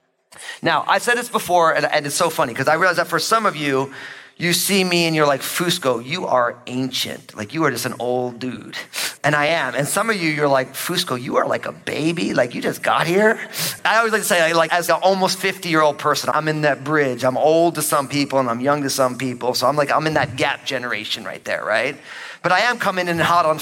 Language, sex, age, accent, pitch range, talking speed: English, male, 30-49, American, 145-215 Hz, 250 wpm